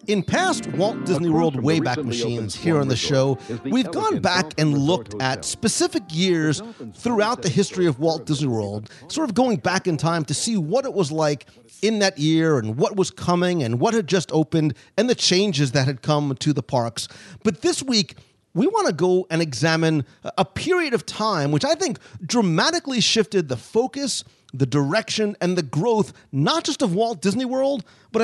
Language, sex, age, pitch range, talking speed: English, male, 40-59, 145-220 Hz, 195 wpm